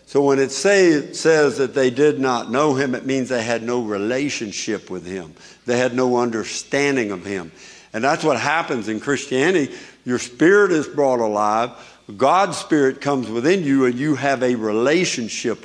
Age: 60-79